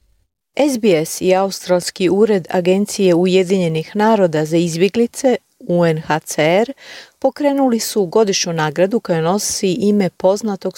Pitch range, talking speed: 170-215 Hz, 100 wpm